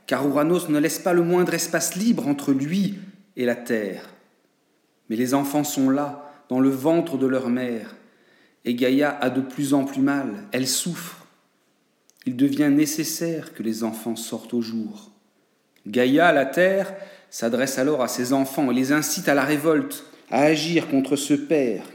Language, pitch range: French, 125-175 Hz